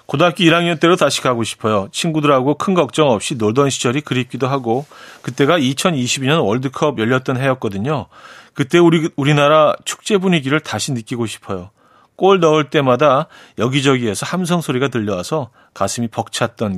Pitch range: 120-165 Hz